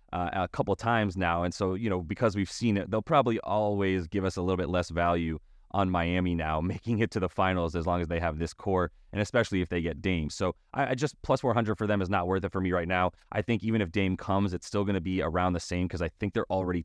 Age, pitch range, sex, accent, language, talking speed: 30-49, 90-110 Hz, male, American, English, 280 wpm